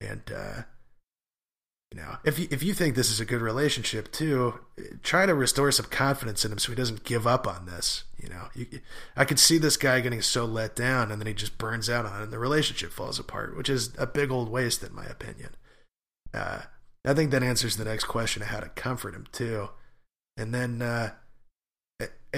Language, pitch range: English, 110-130 Hz